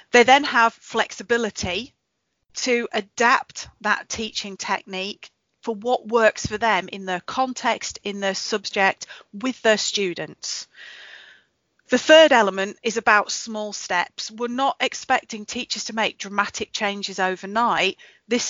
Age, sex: 40-59, female